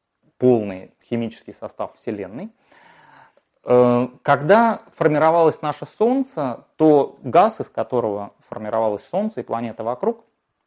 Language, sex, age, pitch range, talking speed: Russian, male, 30-49, 110-160 Hz, 95 wpm